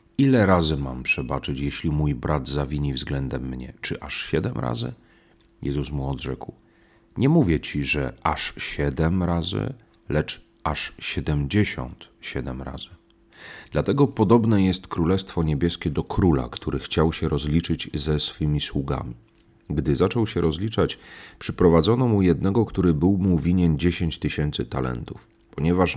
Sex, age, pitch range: male, 40-59, 75-95 Hz